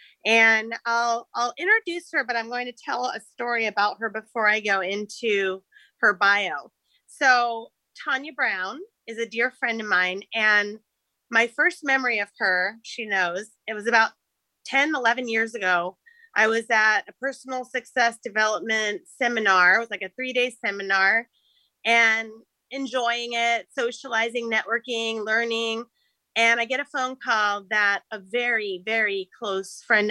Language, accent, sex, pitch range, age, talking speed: English, American, female, 205-245 Hz, 30-49, 150 wpm